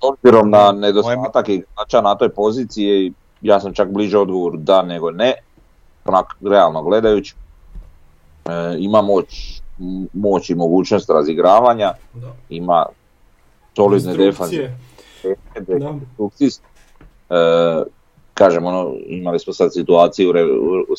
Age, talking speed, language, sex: 30-49, 100 wpm, Croatian, male